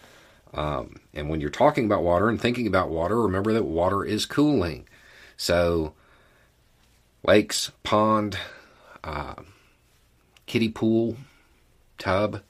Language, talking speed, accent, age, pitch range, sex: English, 110 wpm, American, 40-59, 85-105 Hz, male